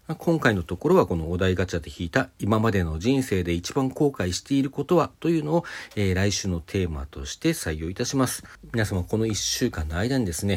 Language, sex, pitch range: Japanese, male, 90-115 Hz